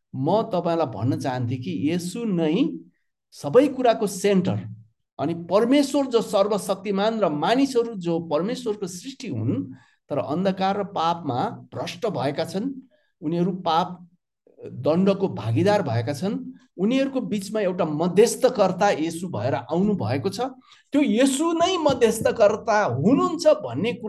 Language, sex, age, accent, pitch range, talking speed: Hindi, male, 60-79, native, 165-250 Hz, 110 wpm